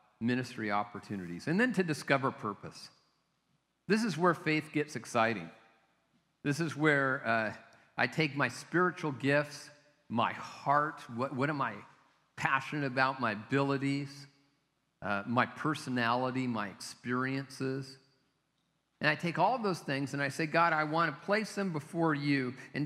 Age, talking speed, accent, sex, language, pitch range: 50-69, 145 wpm, American, male, English, 135-170 Hz